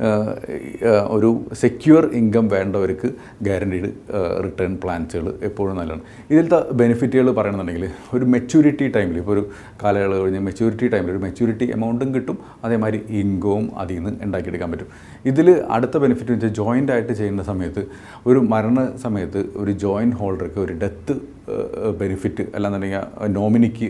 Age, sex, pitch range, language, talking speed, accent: 50-69, male, 100-120 Hz, Malayalam, 125 wpm, native